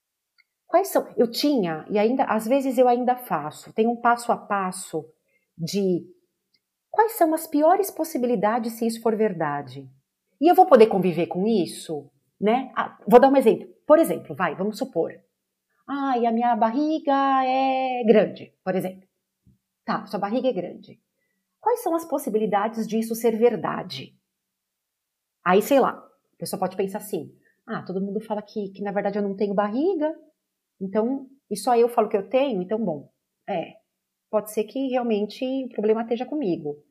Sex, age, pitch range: female, 40-59, 190-260 Hz